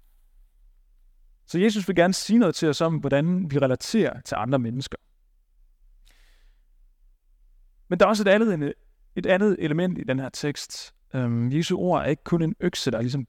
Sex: male